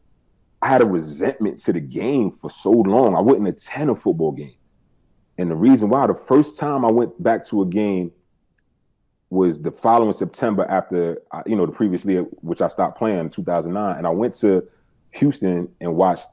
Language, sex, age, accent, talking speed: English, male, 30-49, American, 185 wpm